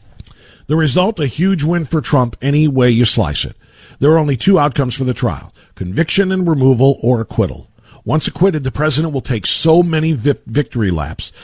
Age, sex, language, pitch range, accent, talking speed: 50-69, male, English, 110-155 Hz, American, 185 wpm